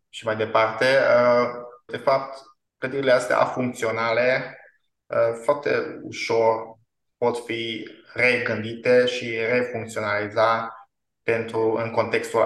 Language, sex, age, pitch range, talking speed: Romanian, male, 20-39, 110-125 Hz, 85 wpm